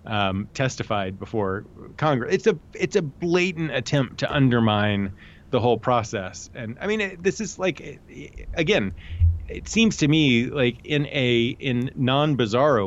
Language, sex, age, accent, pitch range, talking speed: English, male, 30-49, American, 110-150 Hz, 160 wpm